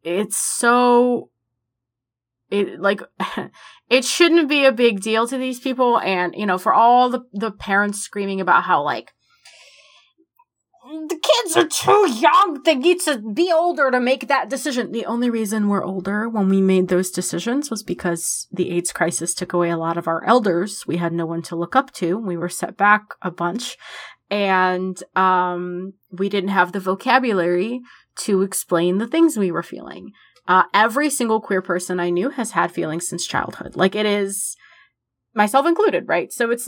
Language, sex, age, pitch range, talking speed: English, female, 20-39, 180-250 Hz, 180 wpm